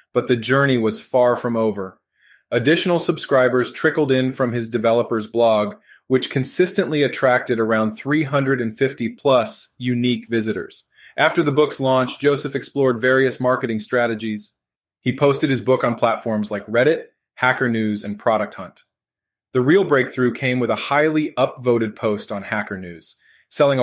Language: English